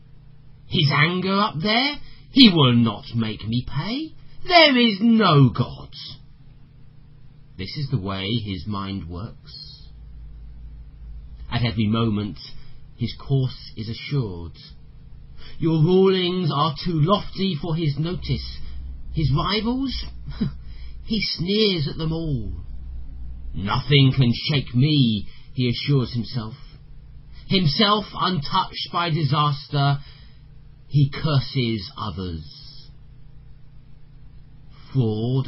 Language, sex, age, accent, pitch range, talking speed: English, male, 40-59, British, 120-155 Hz, 100 wpm